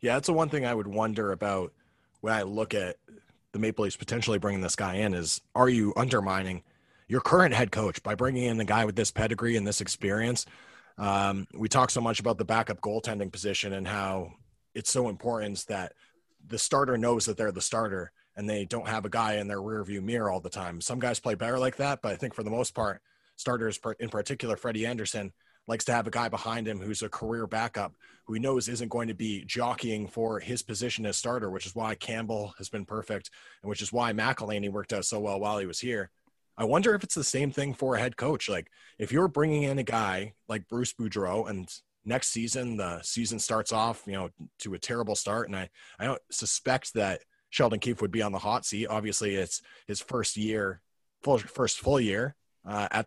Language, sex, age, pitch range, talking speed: English, male, 30-49, 100-120 Hz, 225 wpm